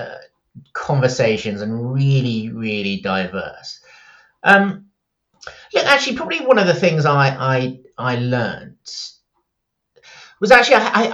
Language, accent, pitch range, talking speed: English, British, 105-150 Hz, 115 wpm